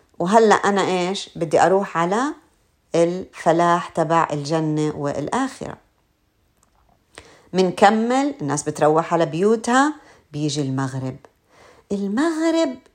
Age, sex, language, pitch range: 50-69, female, Arabic, 145-205 Hz